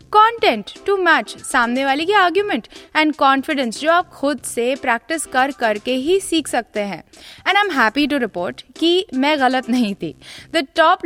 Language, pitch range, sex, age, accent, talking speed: Hindi, 250-345 Hz, female, 20-39, native, 180 wpm